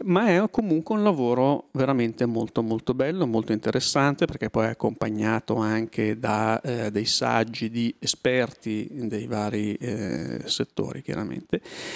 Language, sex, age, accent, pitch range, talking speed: Italian, male, 40-59, native, 110-130 Hz, 135 wpm